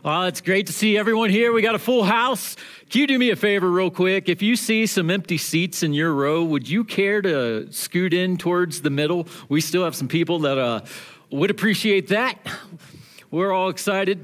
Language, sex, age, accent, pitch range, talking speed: English, male, 40-59, American, 165-210 Hz, 215 wpm